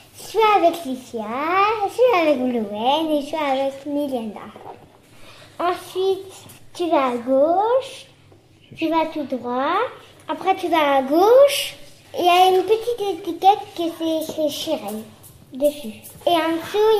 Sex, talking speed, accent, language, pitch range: male, 140 wpm, French, French, 285-370 Hz